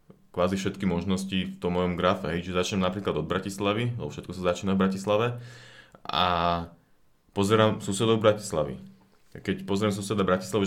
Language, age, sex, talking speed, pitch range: Slovak, 30-49, male, 150 wpm, 90-110 Hz